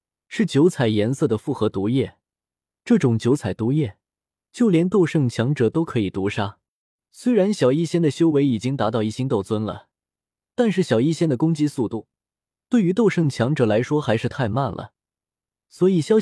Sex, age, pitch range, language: male, 20-39, 110-160 Hz, Chinese